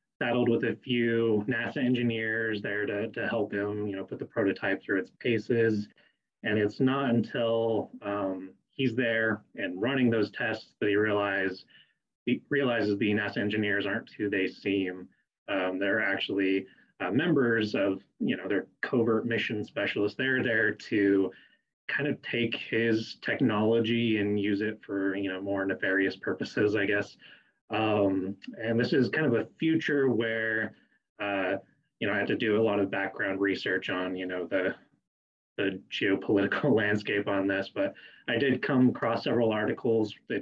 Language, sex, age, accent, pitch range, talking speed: English, male, 20-39, American, 100-115 Hz, 160 wpm